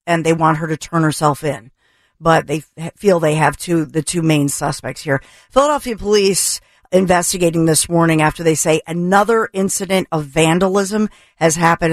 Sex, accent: female, American